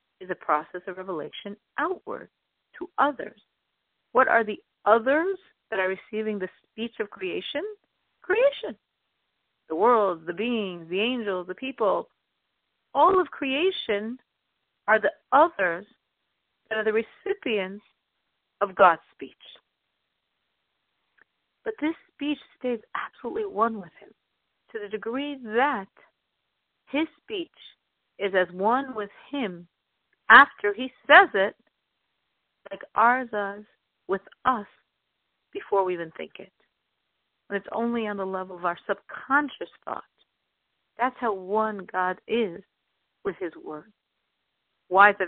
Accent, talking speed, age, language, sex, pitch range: American, 125 wpm, 40-59, English, female, 200-285 Hz